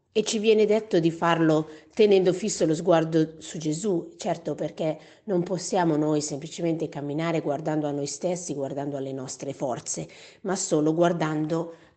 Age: 40-59